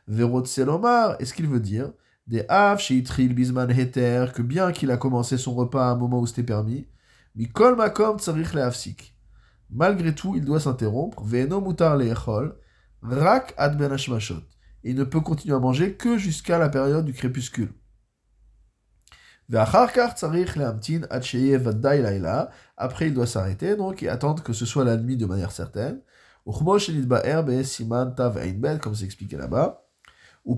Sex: male